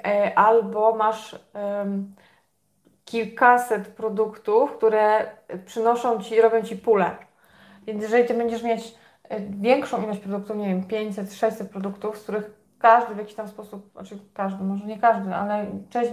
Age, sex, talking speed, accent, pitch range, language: 20-39, female, 140 wpm, native, 215-240 Hz, Polish